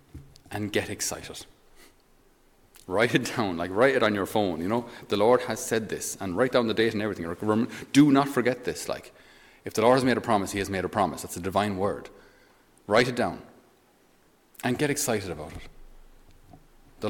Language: English